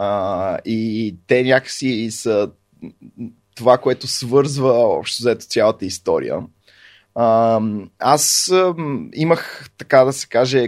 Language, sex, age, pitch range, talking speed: Bulgarian, male, 20-39, 115-145 Hz, 95 wpm